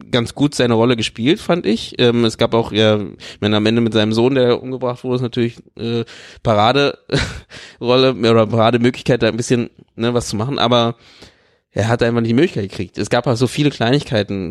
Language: German